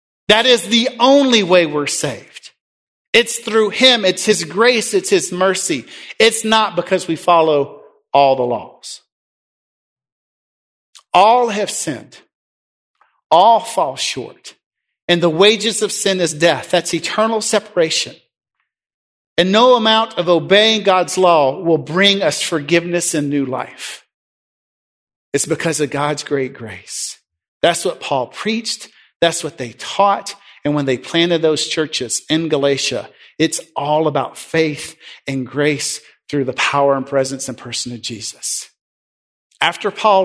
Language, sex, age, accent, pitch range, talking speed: English, male, 50-69, American, 140-195 Hz, 140 wpm